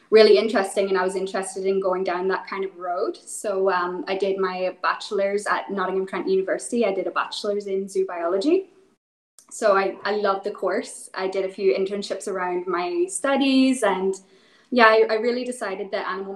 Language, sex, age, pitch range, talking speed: English, female, 10-29, 190-220 Hz, 190 wpm